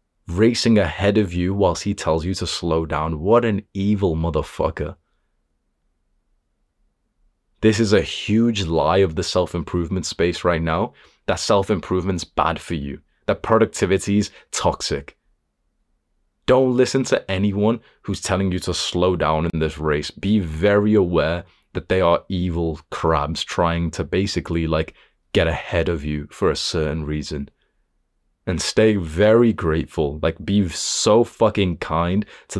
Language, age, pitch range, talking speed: English, 30-49, 80-100 Hz, 140 wpm